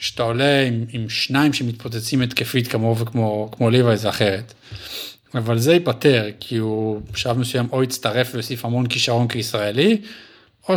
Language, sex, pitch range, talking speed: Hebrew, male, 110-140 Hz, 150 wpm